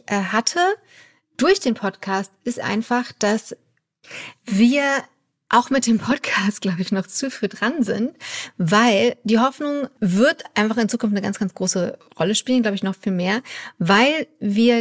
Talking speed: 160 wpm